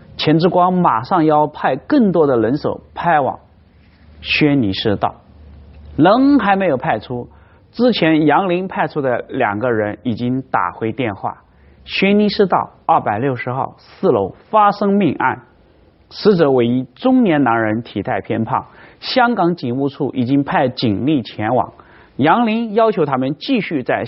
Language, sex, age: Chinese, male, 30-49